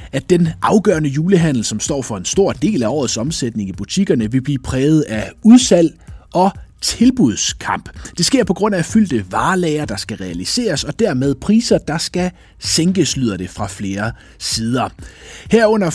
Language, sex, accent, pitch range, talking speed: Danish, male, native, 110-165 Hz, 165 wpm